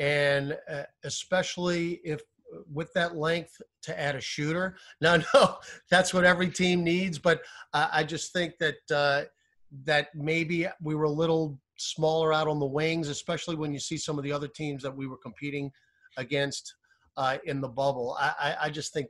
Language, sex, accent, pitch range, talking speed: English, male, American, 140-160 Hz, 180 wpm